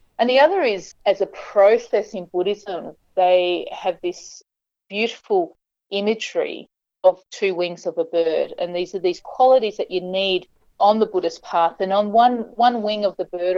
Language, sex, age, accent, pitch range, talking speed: English, female, 40-59, Australian, 175-225 Hz, 175 wpm